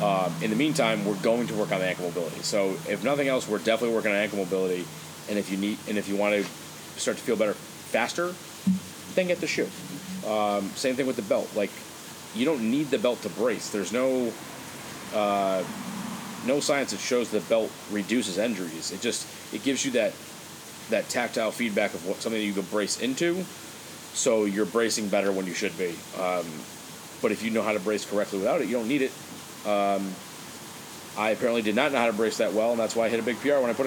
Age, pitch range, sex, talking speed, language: 30-49, 100-115 Hz, male, 225 wpm, English